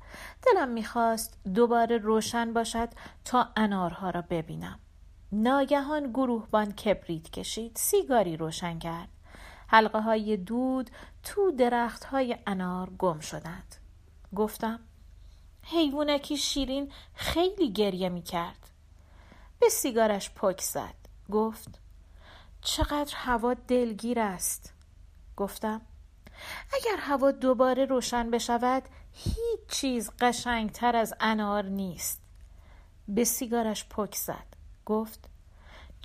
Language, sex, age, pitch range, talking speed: Persian, female, 40-59, 175-250 Hz, 100 wpm